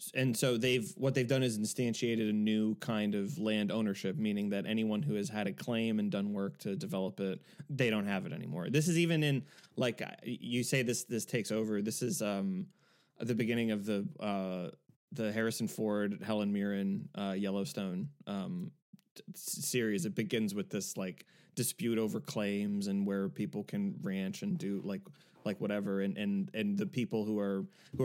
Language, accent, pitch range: English, American, 105-135 Hz